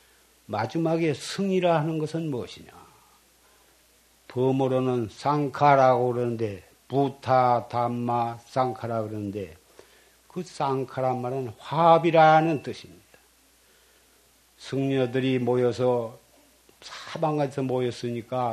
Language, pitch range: Korean, 125-170 Hz